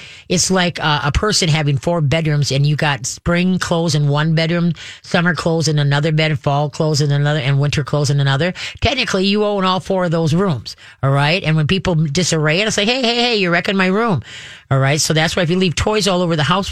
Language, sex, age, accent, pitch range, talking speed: English, female, 40-59, American, 140-175 Hz, 240 wpm